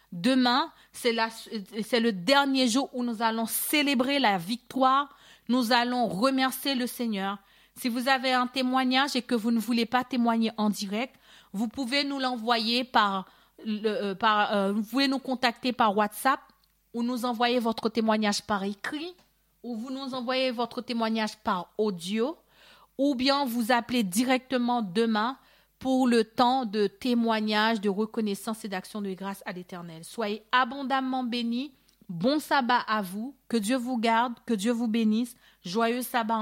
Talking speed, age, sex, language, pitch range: 160 wpm, 40-59, female, French, 210-250 Hz